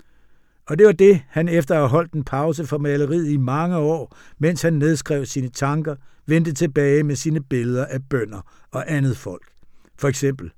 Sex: male